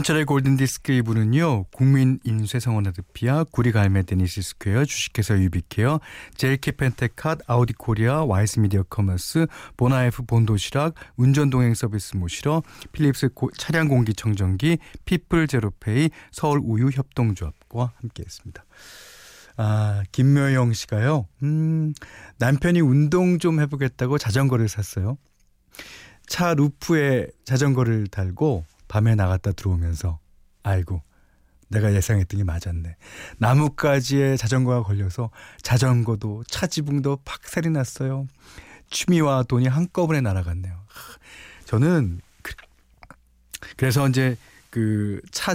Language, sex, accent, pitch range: Korean, male, native, 100-145 Hz